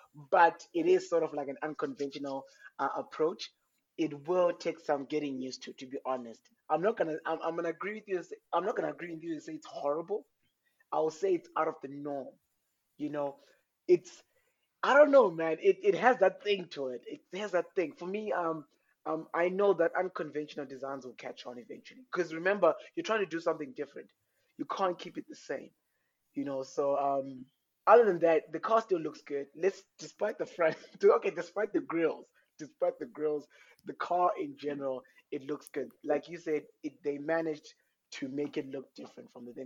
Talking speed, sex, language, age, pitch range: 205 wpm, male, English, 20-39, 140-185 Hz